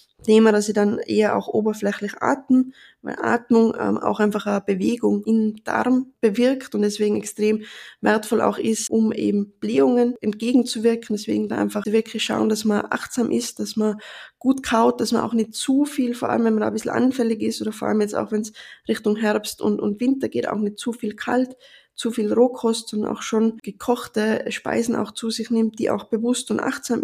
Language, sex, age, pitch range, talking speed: German, female, 20-39, 215-240 Hz, 200 wpm